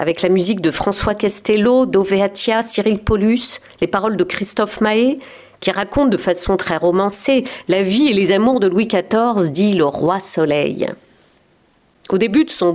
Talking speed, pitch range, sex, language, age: 170 wpm, 180-235 Hz, female, French, 40-59